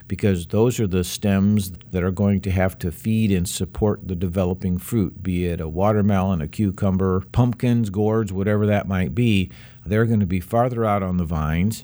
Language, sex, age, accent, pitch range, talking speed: English, male, 50-69, American, 95-110 Hz, 195 wpm